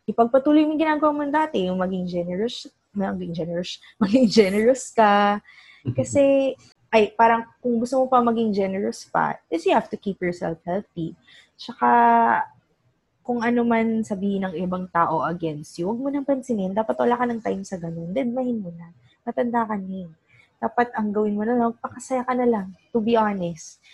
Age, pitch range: 20-39, 170-230 Hz